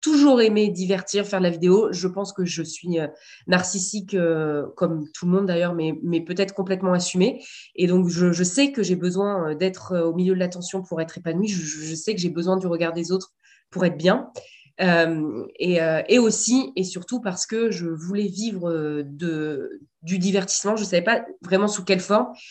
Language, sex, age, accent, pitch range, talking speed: French, female, 20-39, French, 175-205 Hz, 205 wpm